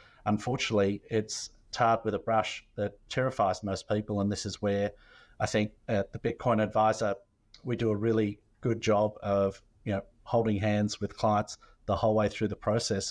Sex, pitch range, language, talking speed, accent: male, 100-115 Hz, English, 180 wpm, Australian